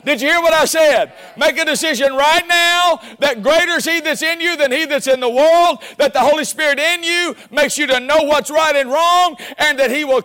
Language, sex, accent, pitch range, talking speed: English, male, American, 260-320 Hz, 245 wpm